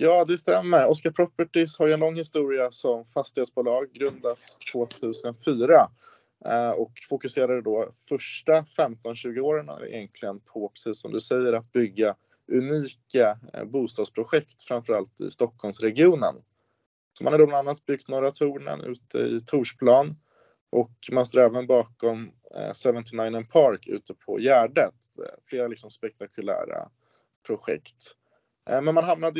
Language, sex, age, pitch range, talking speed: Swedish, male, 20-39, 110-145 Hz, 120 wpm